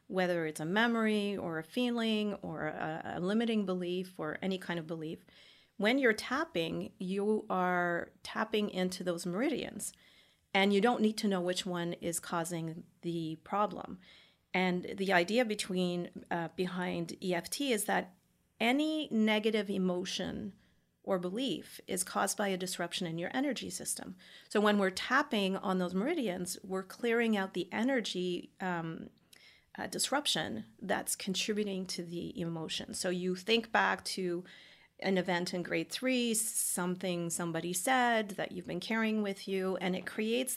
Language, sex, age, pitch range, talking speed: English, female, 40-59, 175-215 Hz, 150 wpm